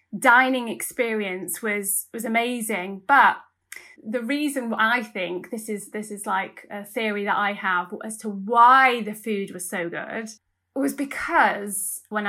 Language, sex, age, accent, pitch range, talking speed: English, female, 20-39, British, 210-275 Hz, 150 wpm